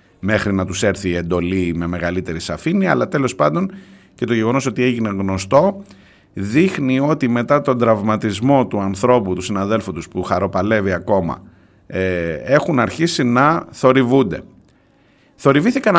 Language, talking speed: Greek, 140 wpm